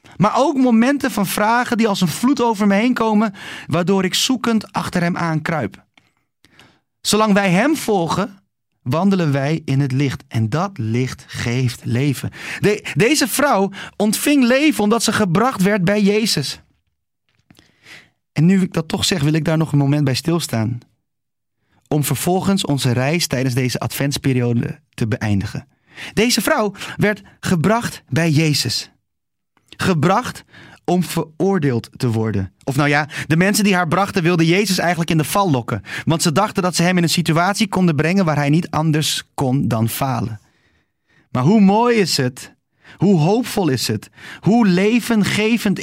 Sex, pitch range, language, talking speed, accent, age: male, 140-205 Hz, Dutch, 160 wpm, Dutch, 30-49